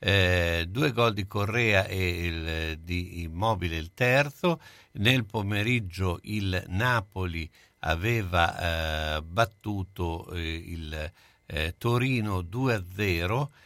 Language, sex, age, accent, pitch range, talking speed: Italian, male, 60-79, native, 90-120 Hz, 105 wpm